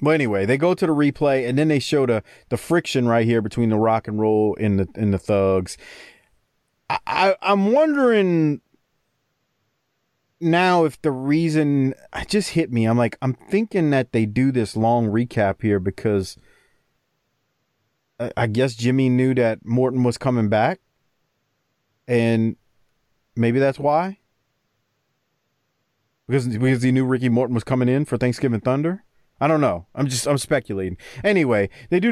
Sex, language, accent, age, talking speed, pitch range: male, English, American, 30-49, 160 wpm, 110-145 Hz